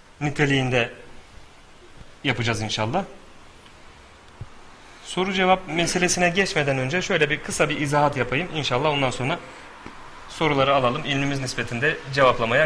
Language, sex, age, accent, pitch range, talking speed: Turkish, male, 40-59, native, 125-165 Hz, 105 wpm